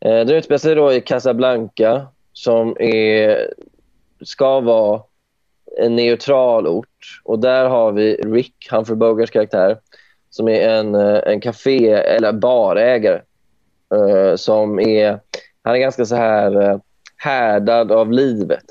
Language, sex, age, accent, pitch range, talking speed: Swedish, male, 20-39, native, 105-125 Hz, 130 wpm